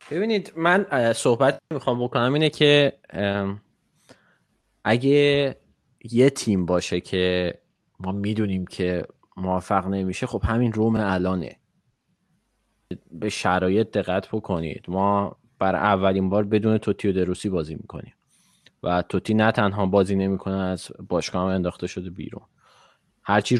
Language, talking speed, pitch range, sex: Persian, 115 wpm, 95-115 Hz, male